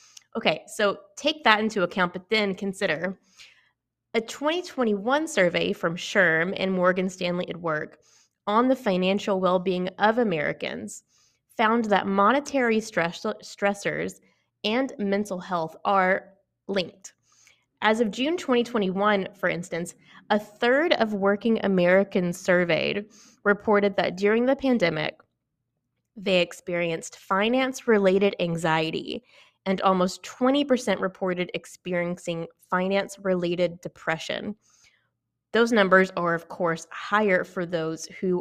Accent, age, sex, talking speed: American, 20-39, female, 110 wpm